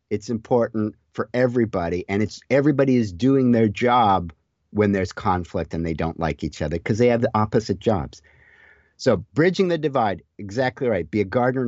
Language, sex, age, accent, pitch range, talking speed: English, male, 50-69, American, 90-125 Hz, 180 wpm